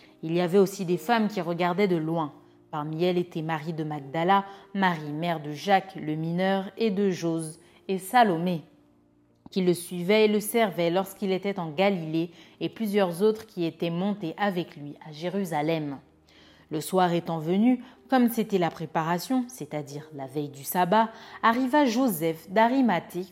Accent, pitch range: French, 155-200 Hz